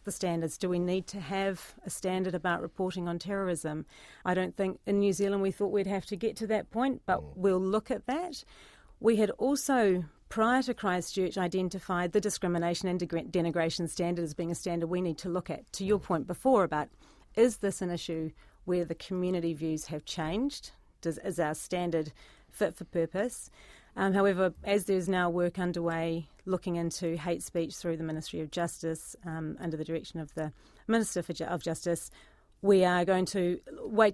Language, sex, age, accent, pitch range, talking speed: English, female, 40-59, Australian, 165-195 Hz, 185 wpm